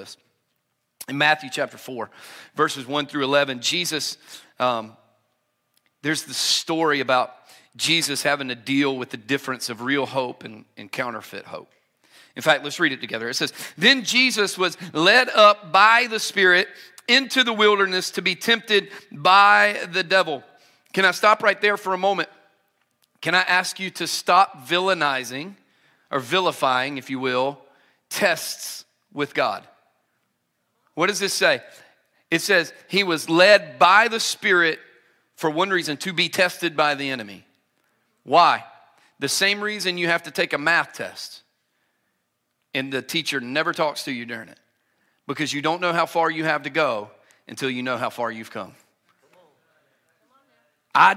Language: English